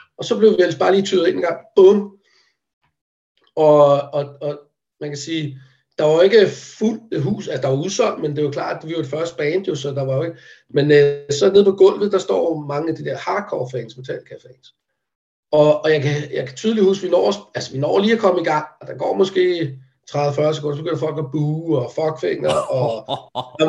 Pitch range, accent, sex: 150-200 Hz, native, male